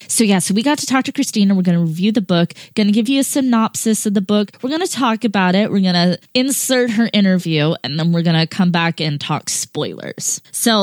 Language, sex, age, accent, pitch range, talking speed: English, female, 20-39, American, 170-220 Hz, 235 wpm